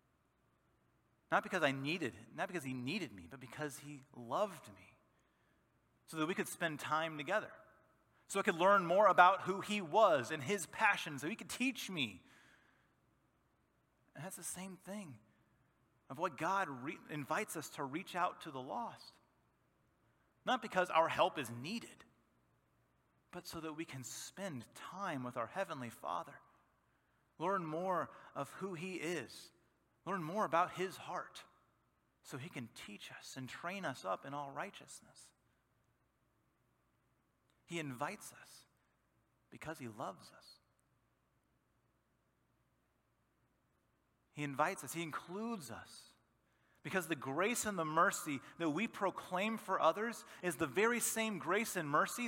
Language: English